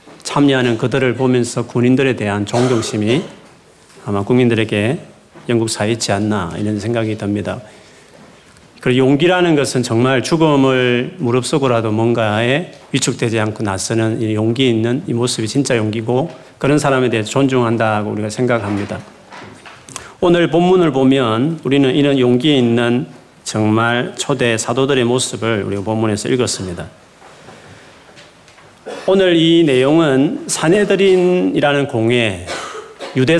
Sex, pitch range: male, 110-140 Hz